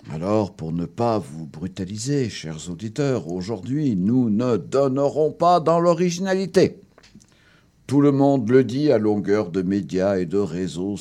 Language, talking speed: French, 145 wpm